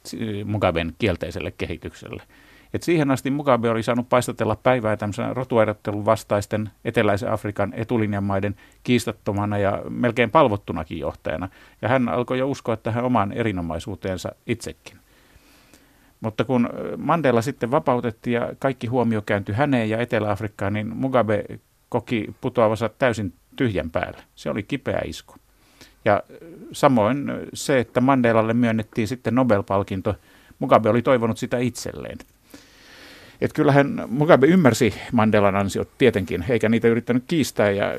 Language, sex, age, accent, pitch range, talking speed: Finnish, male, 50-69, native, 105-130 Hz, 120 wpm